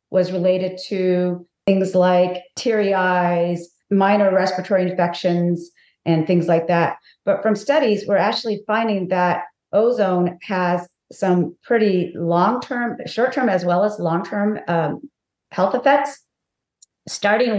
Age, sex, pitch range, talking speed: 40-59, female, 175-205 Hz, 115 wpm